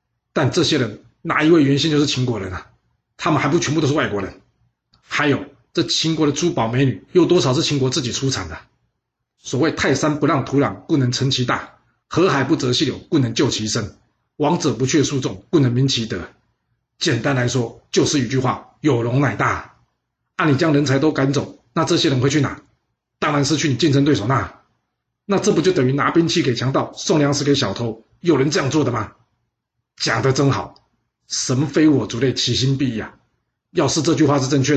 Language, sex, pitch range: Chinese, male, 120-145 Hz